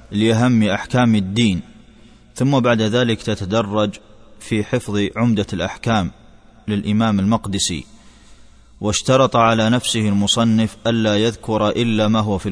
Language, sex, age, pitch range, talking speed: Arabic, male, 20-39, 105-115 Hz, 110 wpm